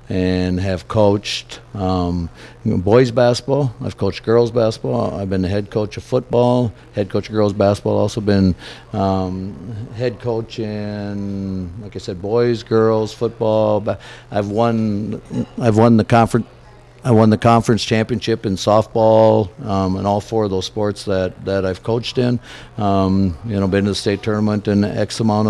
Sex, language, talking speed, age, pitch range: male, English, 165 wpm, 50-69, 100-115 Hz